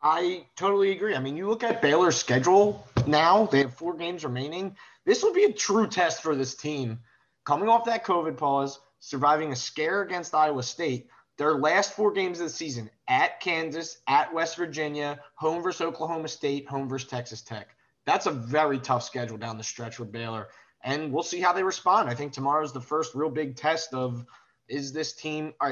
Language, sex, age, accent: English, male, 20-39, American